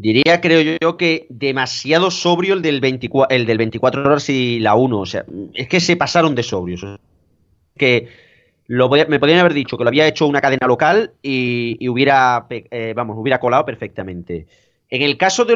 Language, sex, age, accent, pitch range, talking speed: Spanish, male, 30-49, Spanish, 125-175 Hz, 205 wpm